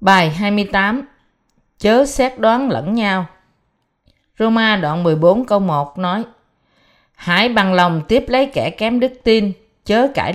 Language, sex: Vietnamese, female